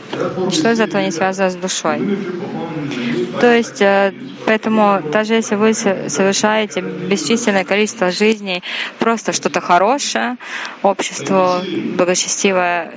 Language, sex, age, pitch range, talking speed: Russian, female, 20-39, 170-215 Hz, 100 wpm